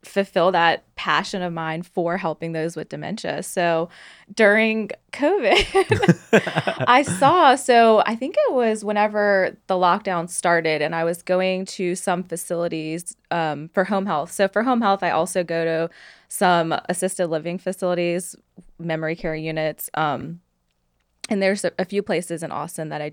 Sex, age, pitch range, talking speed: female, 20-39, 165-195 Hz, 155 wpm